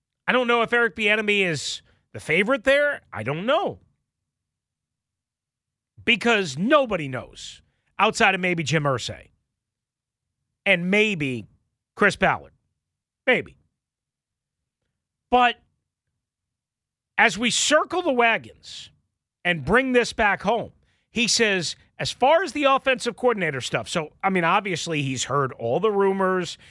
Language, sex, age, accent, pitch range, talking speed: English, male, 40-59, American, 150-230 Hz, 125 wpm